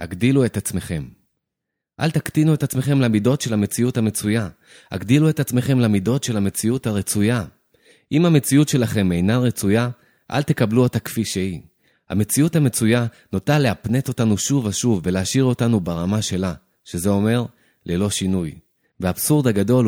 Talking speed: 135 wpm